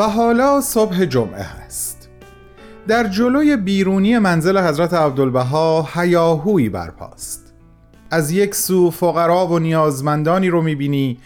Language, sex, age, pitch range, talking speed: Persian, male, 30-49, 130-185 Hz, 110 wpm